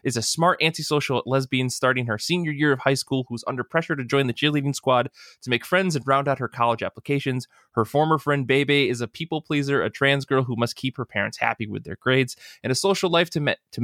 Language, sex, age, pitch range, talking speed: English, male, 20-39, 110-135 Hz, 240 wpm